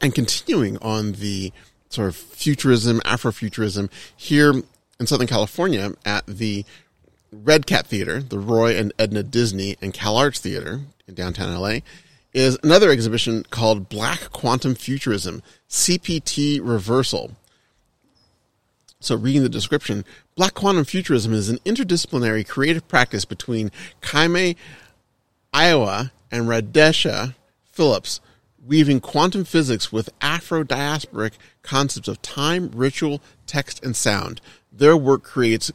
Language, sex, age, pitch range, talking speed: English, male, 30-49, 110-145 Hz, 115 wpm